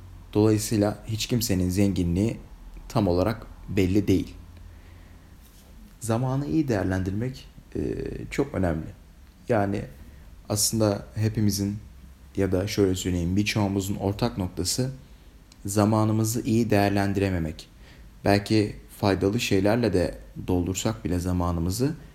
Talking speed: 90 wpm